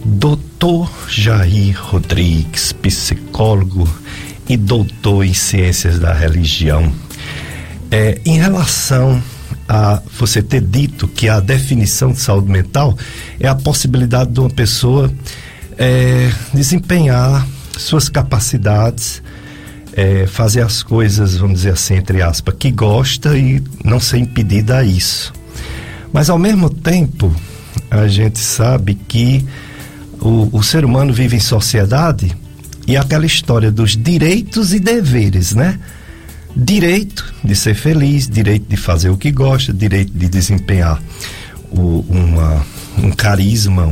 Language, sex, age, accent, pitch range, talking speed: Portuguese, male, 50-69, Brazilian, 95-130 Hz, 120 wpm